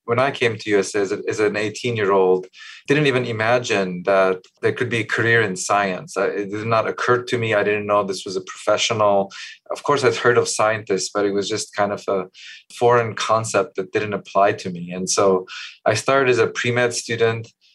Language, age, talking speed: English, 20-39, 205 wpm